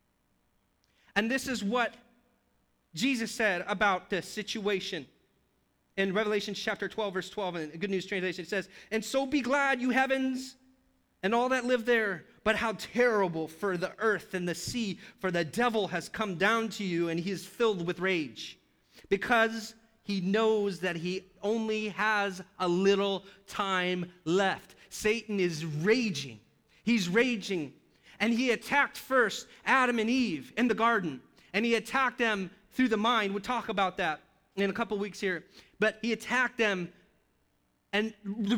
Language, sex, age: English, male, 30-49